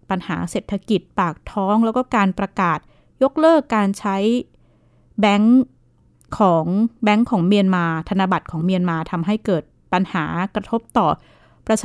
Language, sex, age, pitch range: Thai, female, 20-39, 175-220 Hz